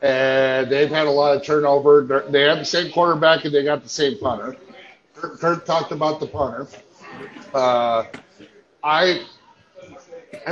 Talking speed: 155 wpm